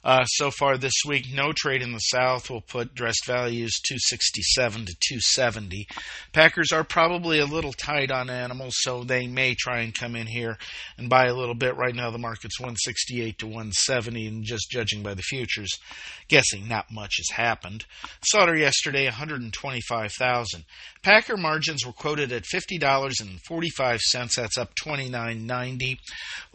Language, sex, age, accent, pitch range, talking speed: English, male, 50-69, American, 115-150 Hz, 155 wpm